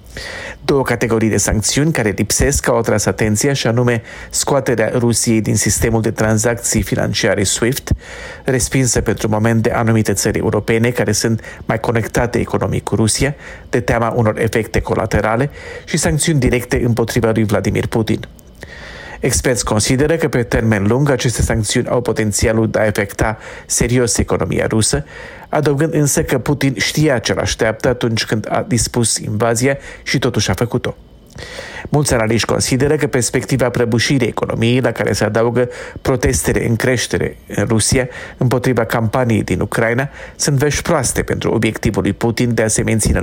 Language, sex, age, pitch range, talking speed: Romanian, male, 40-59, 110-130 Hz, 145 wpm